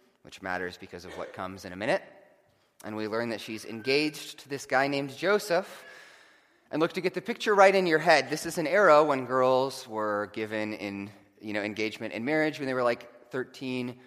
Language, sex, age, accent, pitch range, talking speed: English, male, 30-49, American, 110-155 Hz, 210 wpm